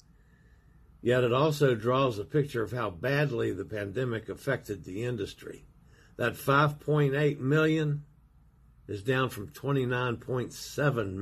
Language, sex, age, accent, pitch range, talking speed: English, male, 50-69, American, 110-145 Hz, 110 wpm